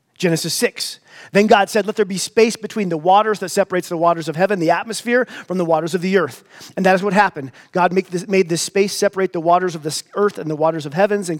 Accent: American